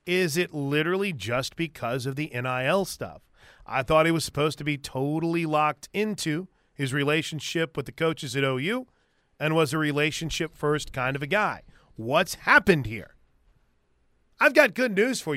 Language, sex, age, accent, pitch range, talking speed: English, male, 30-49, American, 145-195 Hz, 165 wpm